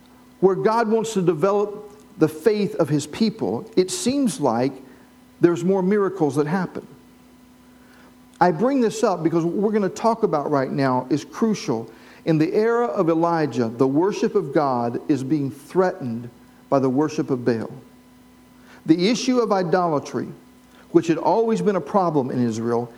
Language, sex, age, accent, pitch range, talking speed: English, male, 50-69, American, 145-200 Hz, 160 wpm